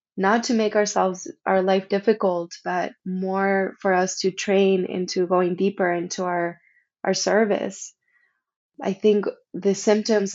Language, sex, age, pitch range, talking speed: English, female, 20-39, 180-200 Hz, 140 wpm